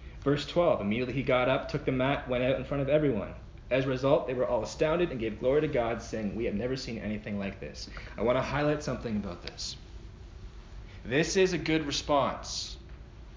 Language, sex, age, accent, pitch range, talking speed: English, male, 30-49, American, 110-155 Hz, 210 wpm